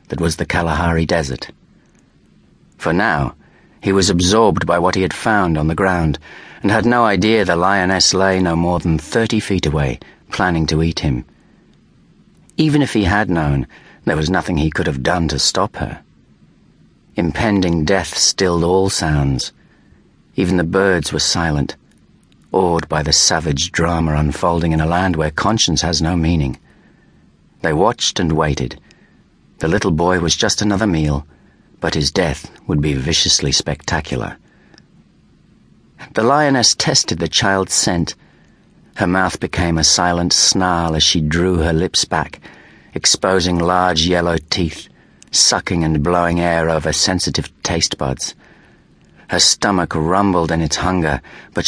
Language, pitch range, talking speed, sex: English, 75-95 Hz, 150 wpm, male